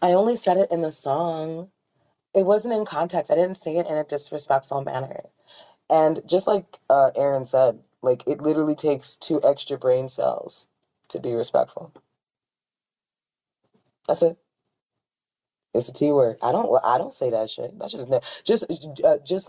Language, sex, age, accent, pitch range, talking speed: English, female, 20-39, American, 135-175 Hz, 170 wpm